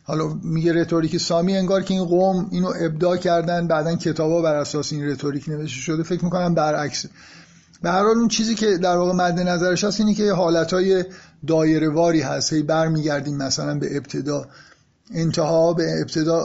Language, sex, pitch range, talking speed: Persian, male, 155-185 Hz, 170 wpm